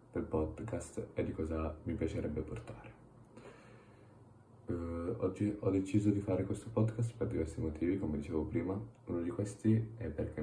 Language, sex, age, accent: Italian, male, 20-39, native